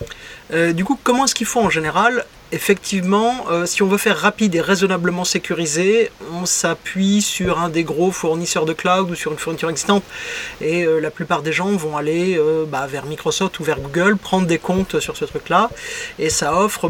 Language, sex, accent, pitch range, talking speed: French, male, French, 170-210 Hz, 205 wpm